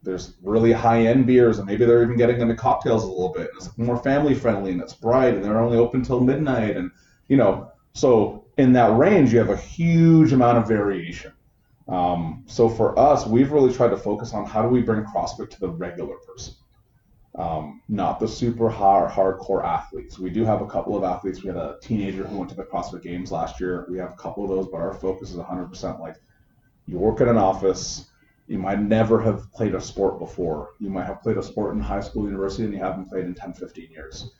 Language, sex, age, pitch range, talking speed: English, male, 30-49, 95-115 Hz, 230 wpm